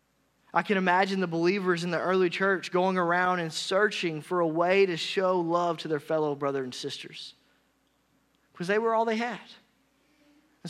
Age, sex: 30-49, male